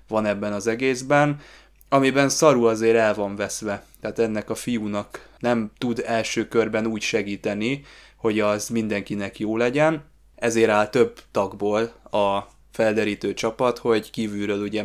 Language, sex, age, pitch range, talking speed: Hungarian, male, 20-39, 105-120 Hz, 140 wpm